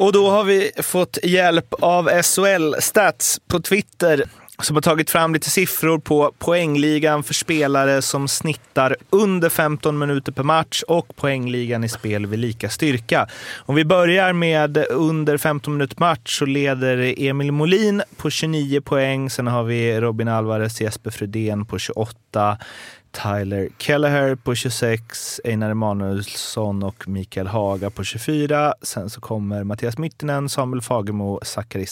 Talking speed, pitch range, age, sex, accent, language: 145 wpm, 110-150 Hz, 30-49, male, native, Swedish